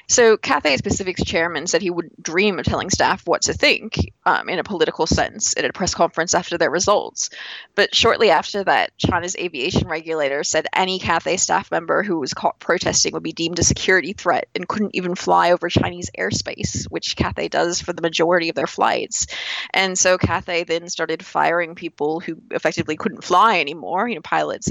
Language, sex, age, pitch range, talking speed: English, female, 20-39, 165-205 Hz, 190 wpm